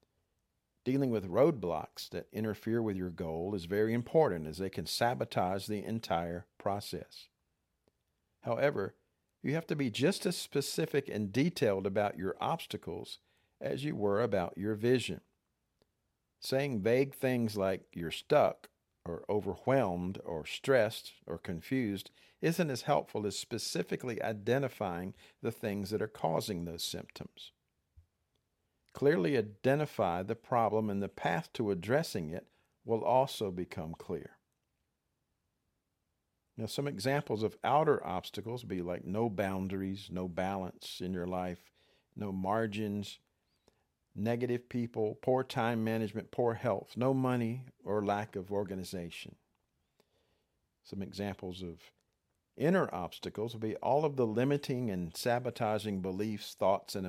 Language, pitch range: English, 90-120 Hz